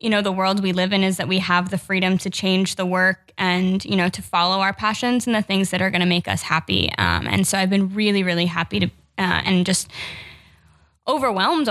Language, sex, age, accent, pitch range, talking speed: English, female, 10-29, American, 180-205 Hz, 240 wpm